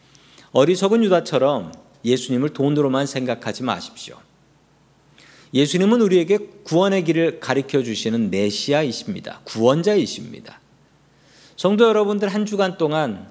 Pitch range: 120-175 Hz